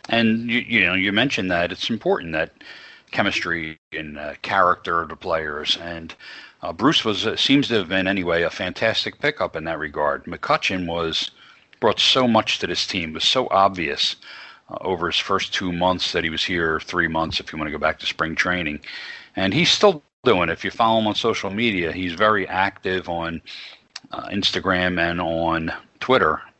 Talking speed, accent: 195 wpm, American